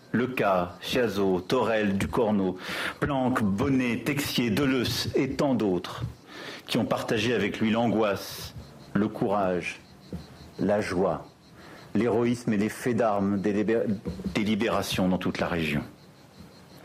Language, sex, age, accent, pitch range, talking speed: French, male, 50-69, French, 105-135 Hz, 115 wpm